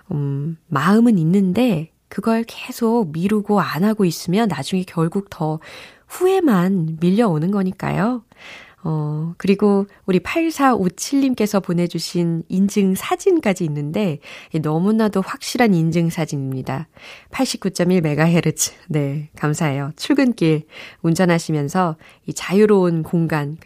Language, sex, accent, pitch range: Korean, female, native, 160-235 Hz